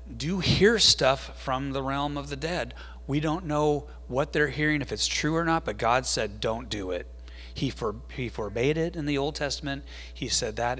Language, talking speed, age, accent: English, 210 wpm, 30-49, American